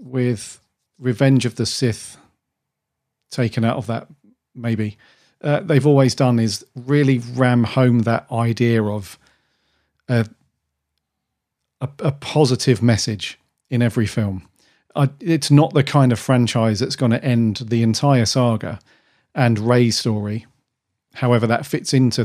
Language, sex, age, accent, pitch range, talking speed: English, male, 40-59, British, 110-135 Hz, 135 wpm